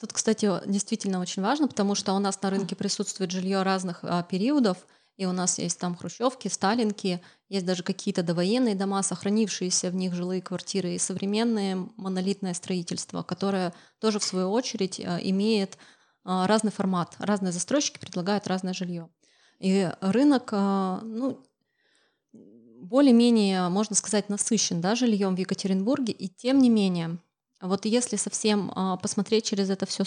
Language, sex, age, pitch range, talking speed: Russian, female, 20-39, 190-220 Hz, 140 wpm